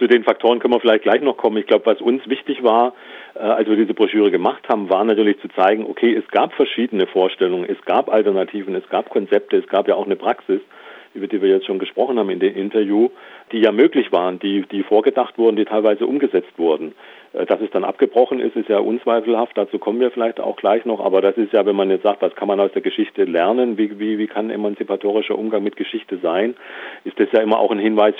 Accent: German